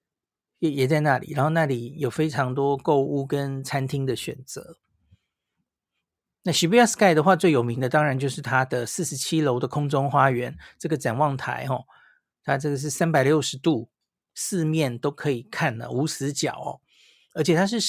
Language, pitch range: Chinese, 135-170 Hz